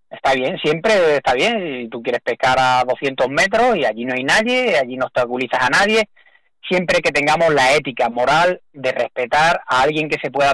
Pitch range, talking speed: 130-170 Hz, 195 wpm